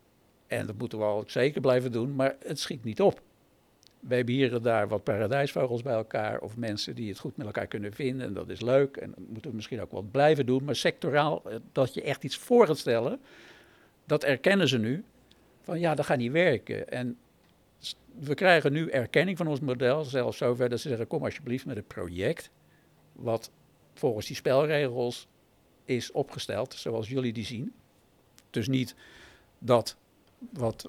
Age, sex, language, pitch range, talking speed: 60-79, male, Dutch, 110-140 Hz, 185 wpm